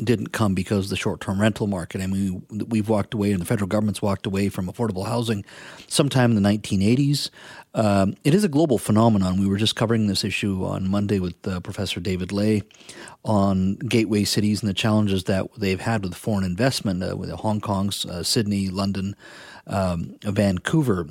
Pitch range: 100-125 Hz